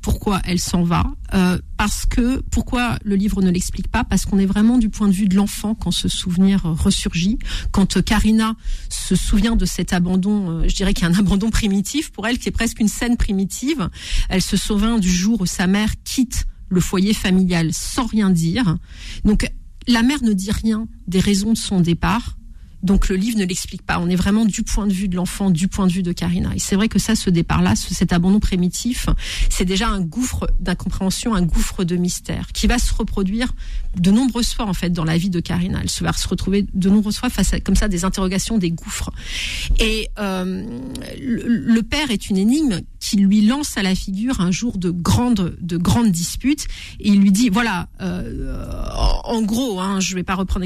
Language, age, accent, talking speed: French, 40-59, French, 210 wpm